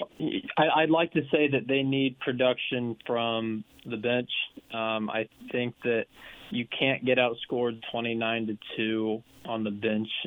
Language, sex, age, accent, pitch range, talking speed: English, male, 20-39, American, 115-135 Hz, 150 wpm